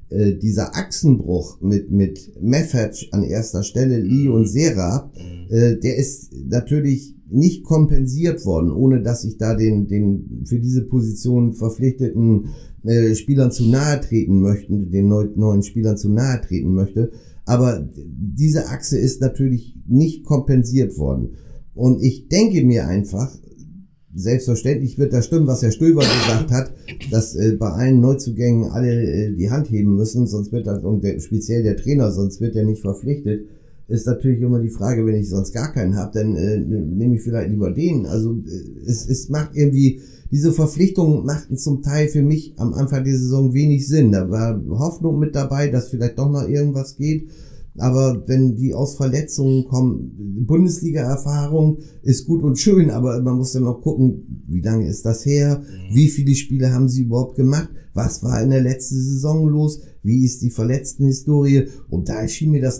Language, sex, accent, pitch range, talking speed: German, male, German, 110-140 Hz, 175 wpm